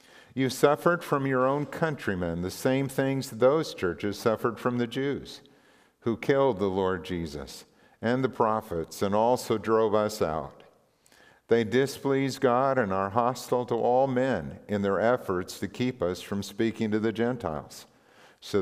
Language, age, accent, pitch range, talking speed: English, 50-69, American, 95-125 Hz, 160 wpm